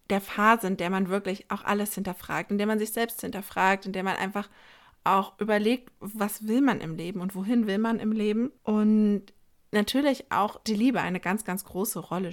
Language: German